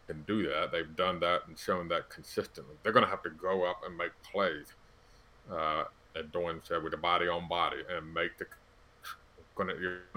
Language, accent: English, American